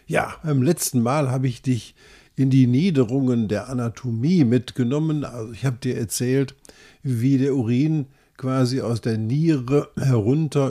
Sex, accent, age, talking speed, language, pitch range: male, German, 50-69, 145 wpm, German, 125-155 Hz